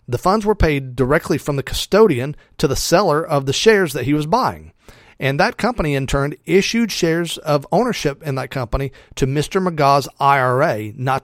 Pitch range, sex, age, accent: 125-165 Hz, male, 40-59, American